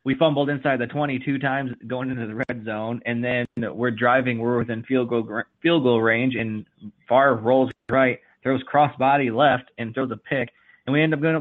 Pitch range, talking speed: 115-145 Hz, 205 wpm